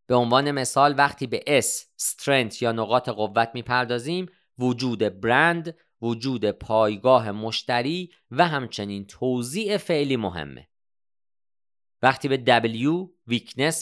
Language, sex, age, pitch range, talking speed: Persian, male, 40-59, 110-155 Hz, 110 wpm